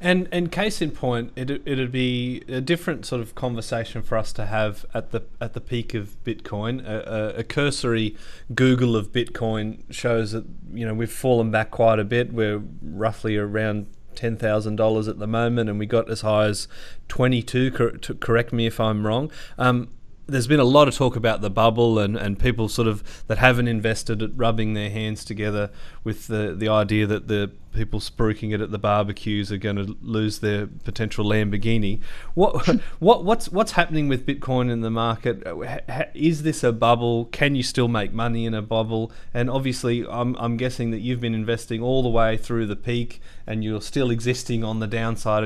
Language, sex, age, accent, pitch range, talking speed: English, male, 30-49, Australian, 110-125 Hz, 195 wpm